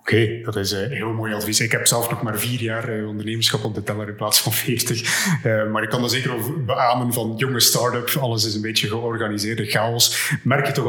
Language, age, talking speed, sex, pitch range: Dutch, 30-49, 240 wpm, male, 105-125 Hz